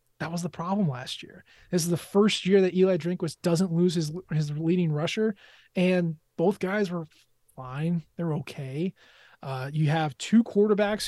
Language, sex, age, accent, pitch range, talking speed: English, male, 20-39, American, 165-230 Hz, 180 wpm